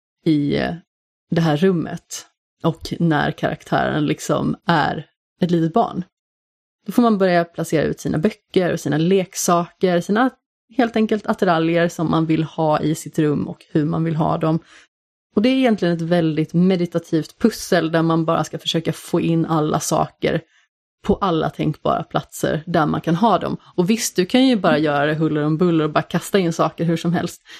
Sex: female